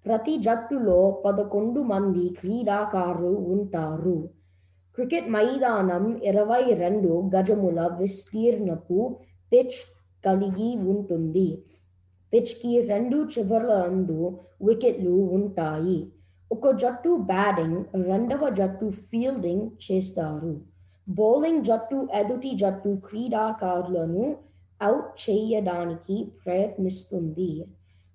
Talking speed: 75 wpm